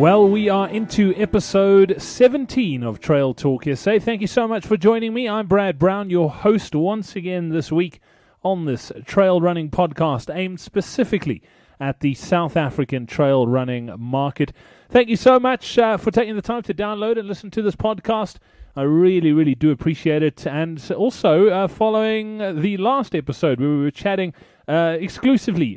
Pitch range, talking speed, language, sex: 145-205 Hz, 175 wpm, English, male